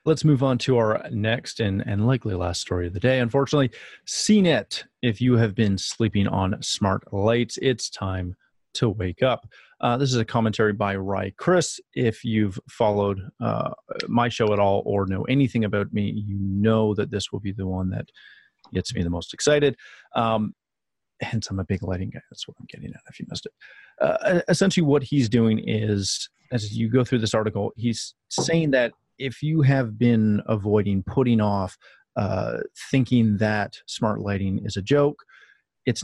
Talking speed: 185 wpm